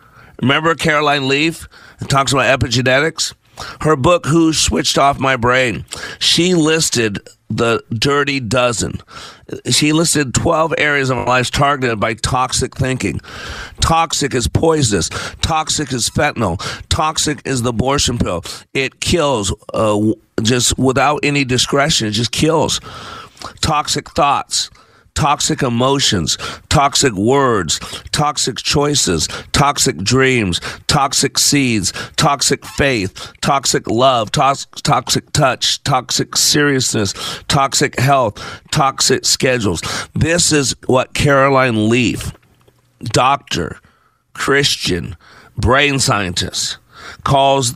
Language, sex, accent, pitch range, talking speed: English, male, American, 120-145 Hz, 105 wpm